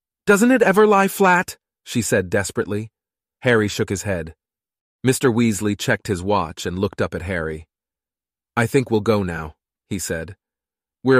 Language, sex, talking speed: Italian, male, 160 wpm